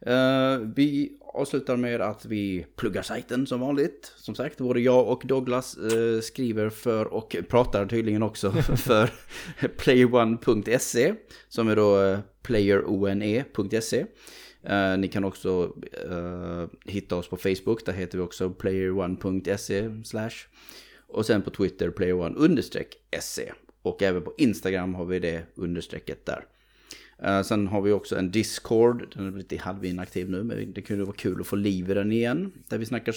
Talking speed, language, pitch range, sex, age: 140 wpm, Swedish, 95-120 Hz, male, 30-49